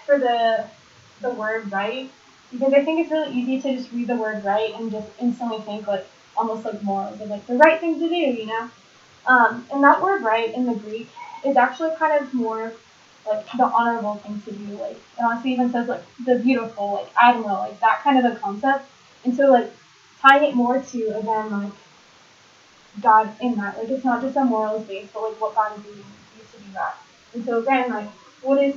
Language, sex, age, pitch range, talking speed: English, female, 10-29, 205-250 Hz, 220 wpm